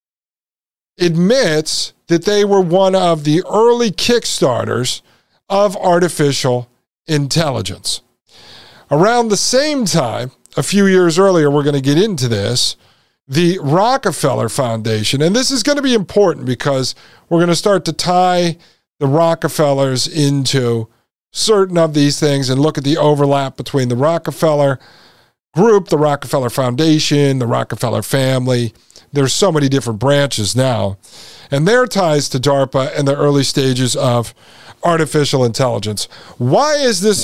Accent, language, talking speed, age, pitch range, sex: American, English, 140 wpm, 50-69, 135-190 Hz, male